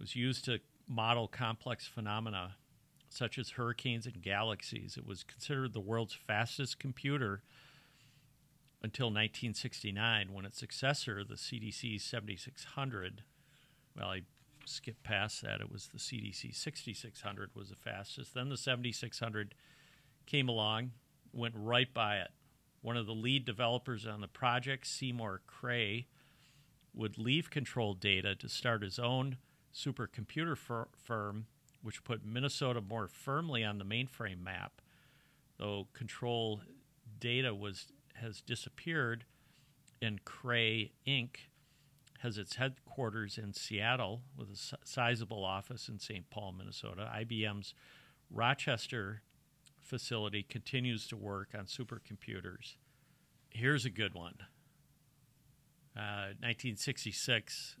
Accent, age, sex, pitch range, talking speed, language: American, 50-69, male, 110-135 Hz, 120 wpm, English